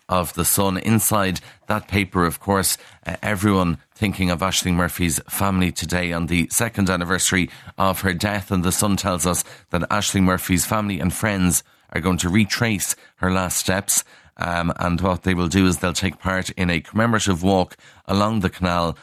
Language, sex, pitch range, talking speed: English, male, 90-105 Hz, 180 wpm